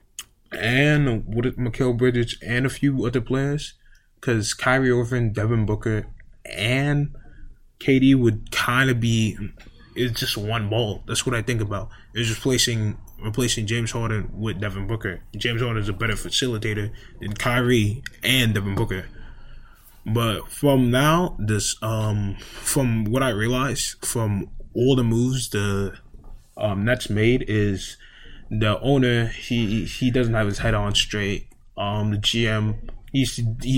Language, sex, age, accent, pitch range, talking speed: English, male, 20-39, American, 105-125 Hz, 140 wpm